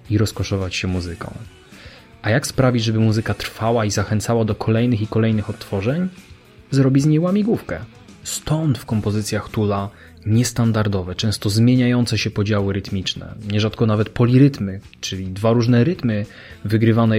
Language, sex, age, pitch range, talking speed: Polish, male, 20-39, 105-130 Hz, 135 wpm